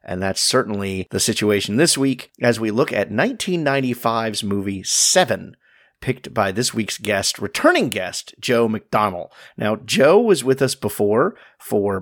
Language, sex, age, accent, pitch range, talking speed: English, male, 40-59, American, 100-130 Hz, 150 wpm